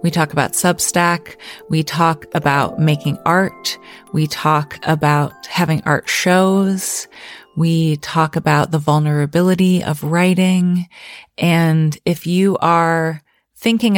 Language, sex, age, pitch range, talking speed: English, female, 30-49, 155-190 Hz, 115 wpm